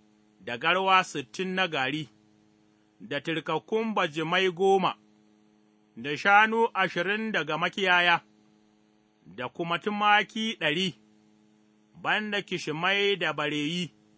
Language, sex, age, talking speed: English, male, 30-49, 85 wpm